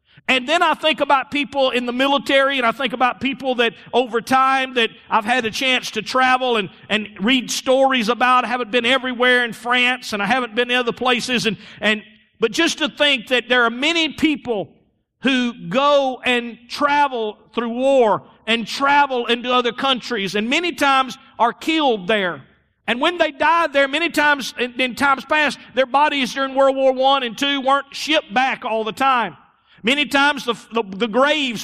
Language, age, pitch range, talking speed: English, 50-69, 230-275 Hz, 190 wpm